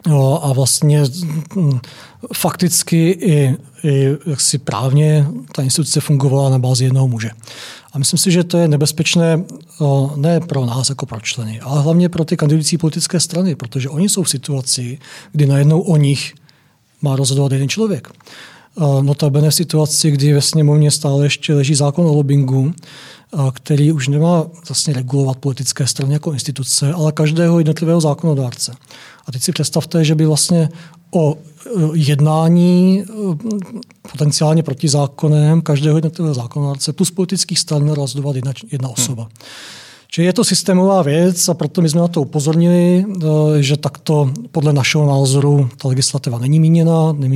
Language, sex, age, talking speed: Czech, male, 40-59, 145 wpm